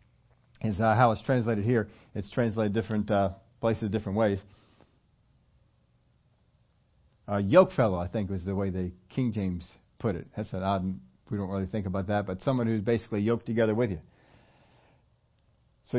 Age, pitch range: 50-69, 110-140 Hz